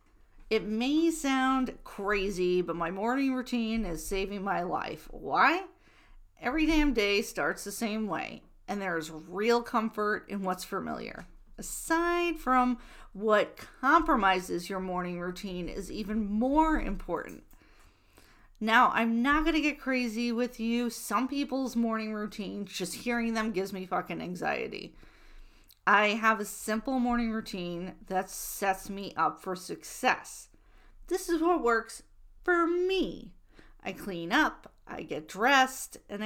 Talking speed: 135 wpm